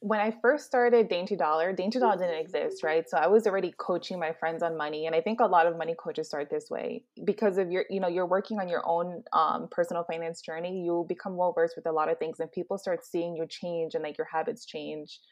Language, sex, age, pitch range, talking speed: English, female, 20-39, 165-200 Hz, 255 wpm